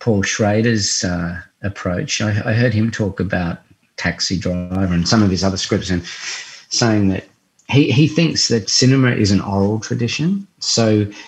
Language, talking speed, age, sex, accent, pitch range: English, 165 wpm, 40-59, male, Australian, 90-115 Hz